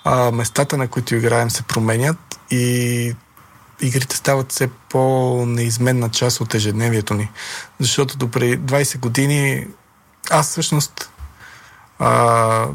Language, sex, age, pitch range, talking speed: Bulgarian, male, 40-59, 115-140 Hz, 110 wpm